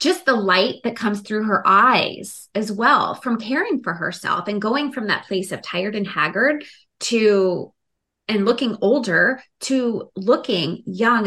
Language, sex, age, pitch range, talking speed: English, female, 20-39, 190-255 Hz, 160 wpm